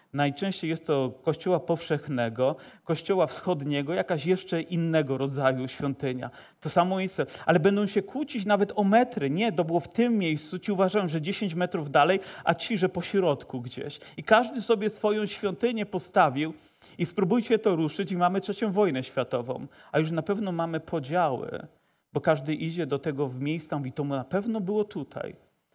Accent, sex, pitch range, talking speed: native, male, 155-195 Hz, 175 wpm